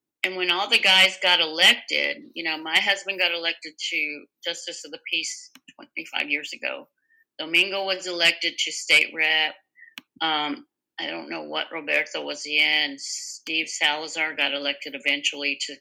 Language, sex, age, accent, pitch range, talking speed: English, female, 50-69, American, 155-250 Hz, 155 wpm